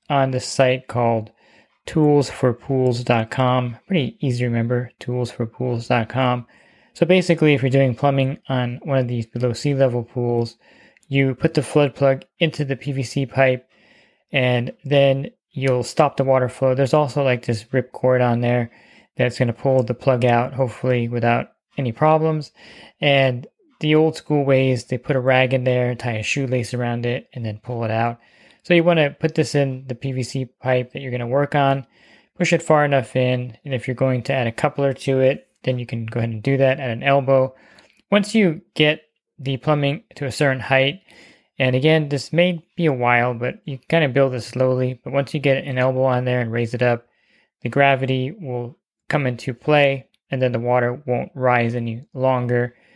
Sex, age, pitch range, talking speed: male, 20-39, 120-140 Hz, 195 wpm